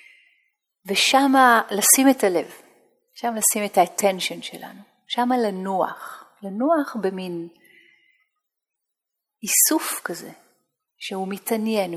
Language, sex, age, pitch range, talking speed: Hebrew, female, 30-49, 190-255 Hz, 85 wpm